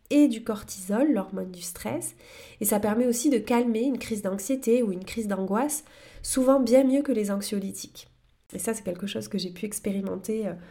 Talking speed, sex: 190 wpm, female